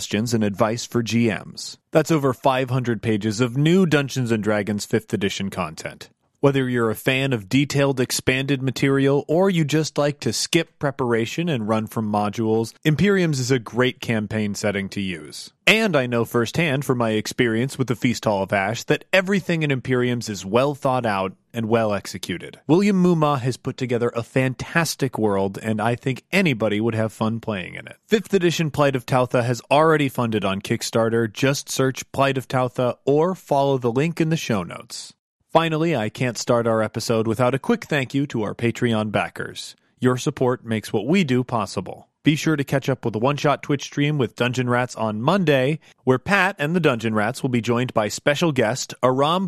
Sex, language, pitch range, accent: male, English, 110-145 Hz, American